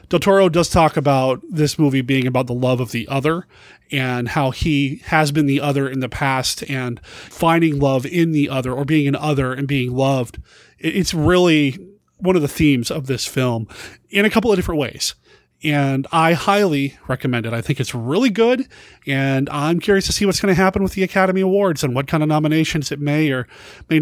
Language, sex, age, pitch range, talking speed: English, male, 30-49, 135-175 Hz, 210 wpm